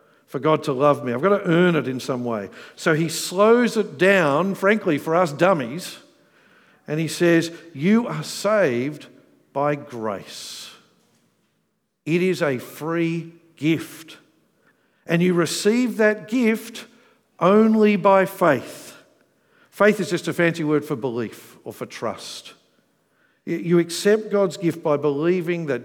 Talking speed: 140 wpm